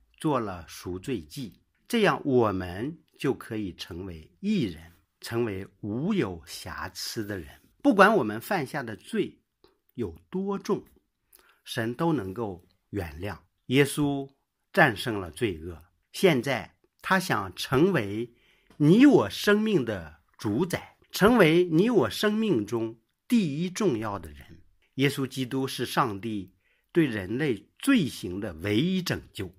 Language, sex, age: English, male, 50-69